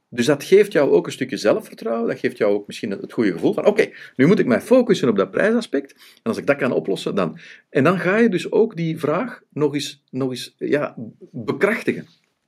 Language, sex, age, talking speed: Dutch, male, 50-69, 215 wpm